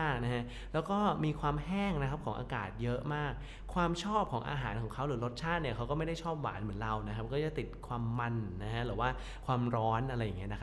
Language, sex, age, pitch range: Thai, male, 20-39, 115-150 Hz